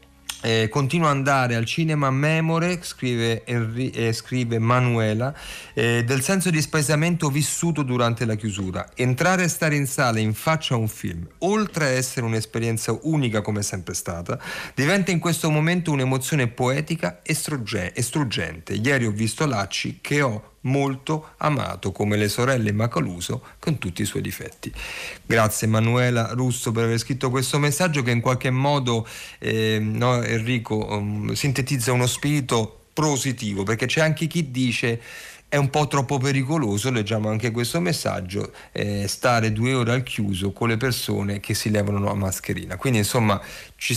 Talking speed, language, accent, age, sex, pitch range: 160 wpm, Italian, native, 40-59, male, 110-140 Hz